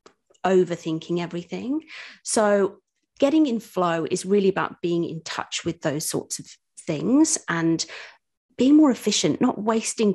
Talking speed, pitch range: 135 wpm, 175-215 Hz